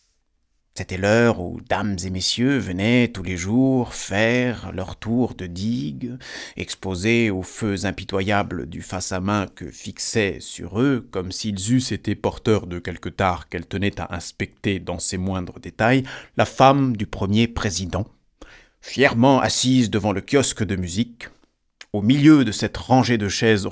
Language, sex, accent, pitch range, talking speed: French, male, French, 95-120 Hz, 155 wpm